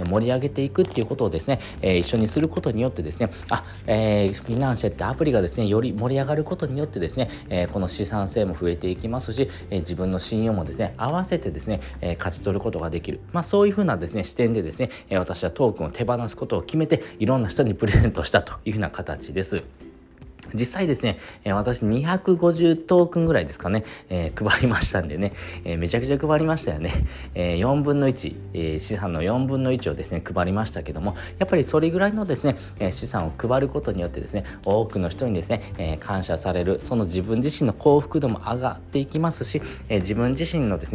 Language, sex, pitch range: Japanese, male, 95-135 Hz